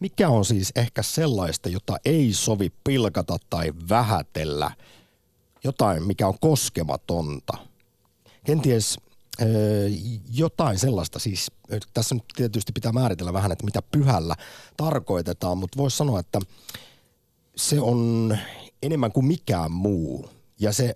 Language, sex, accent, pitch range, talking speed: Finnish, male, native, 90-125 Hz, 115 wpm